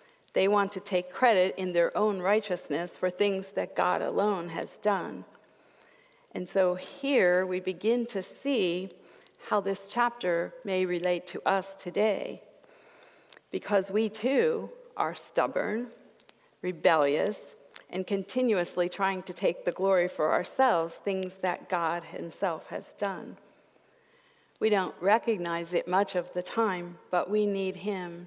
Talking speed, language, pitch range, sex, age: 135 wpm, English, 180-215 Hz, female, 50-69